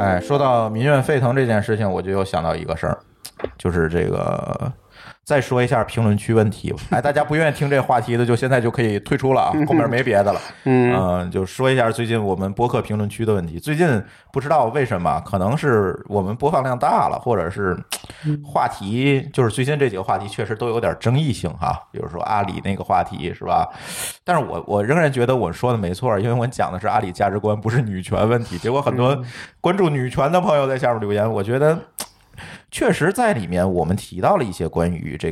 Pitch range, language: 95-140 Hz, Chinese